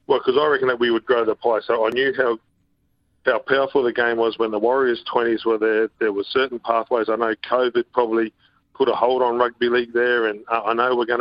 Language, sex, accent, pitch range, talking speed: English, male, Australian, 110-125 Hz, 240 wpm